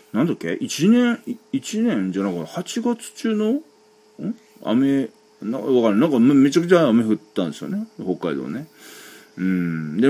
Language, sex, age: Japanese, male, 40-59